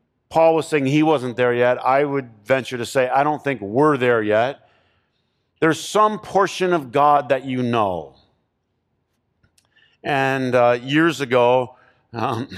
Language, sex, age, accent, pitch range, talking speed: English, male, 40-59, American, 120-150 Hz, 150 wpm